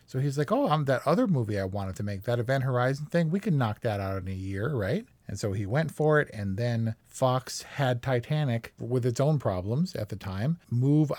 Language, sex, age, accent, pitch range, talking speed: English, male, 40-59, American, 110-135 Hz, 235 wpm